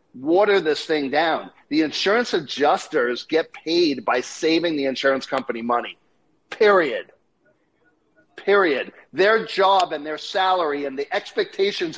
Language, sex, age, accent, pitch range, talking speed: English, male, 50-69, American, 150-220 Hz, 125 wpm